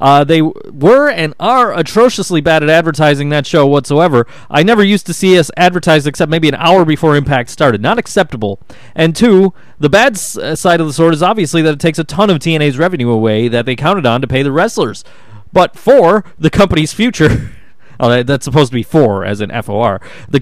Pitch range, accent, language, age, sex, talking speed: 140-195 Hz, American, English, 30-49, male, 210 wpm